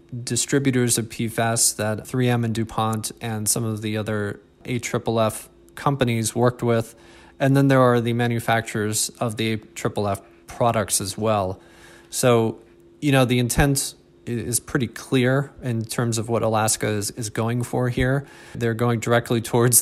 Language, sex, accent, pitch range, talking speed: English, male, American, 110-120 Hz, 150 wpm